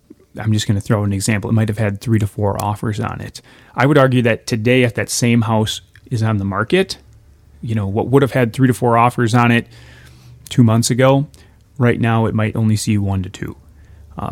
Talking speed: 225 wpm